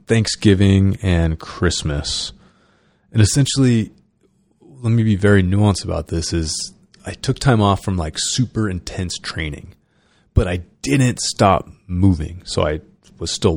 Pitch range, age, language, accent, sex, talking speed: 90-105 Hz, 30-49, English, American, male, 135 wpm